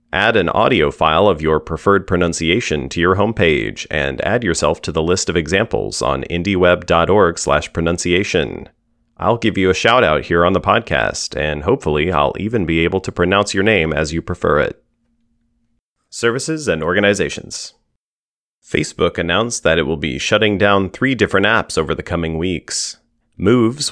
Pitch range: 80-110 Hz